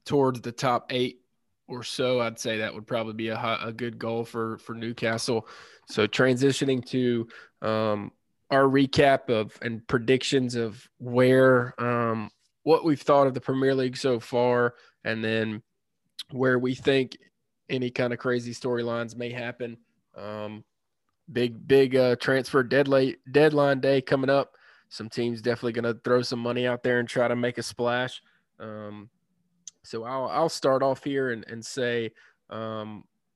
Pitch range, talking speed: 115-130 Hz, 160 wpm